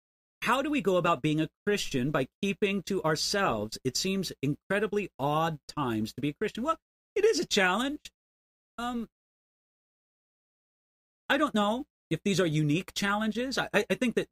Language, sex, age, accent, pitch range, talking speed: English, male, 40-59, American, 135-200 Hz, 165 wpm